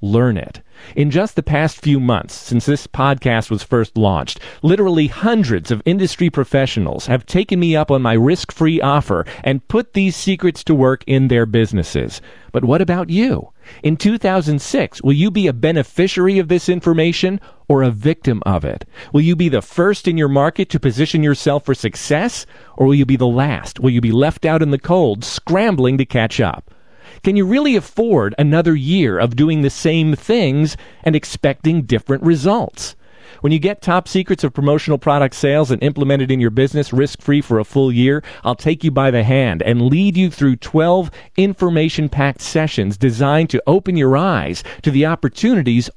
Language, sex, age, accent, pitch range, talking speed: English, male, 40-59, American, 125-165 Hz, 190 wpm